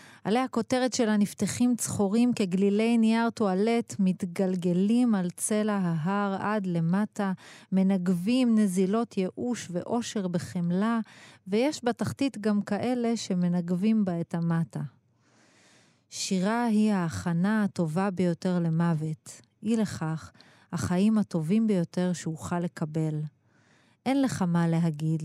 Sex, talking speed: female, 105 wpm